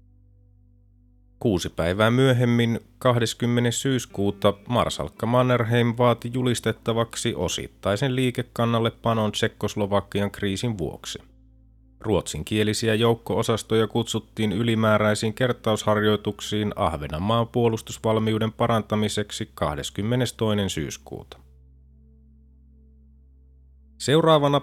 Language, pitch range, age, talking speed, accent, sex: Finnish, 90-115 Hz, 30-49, 70 wpm, native, male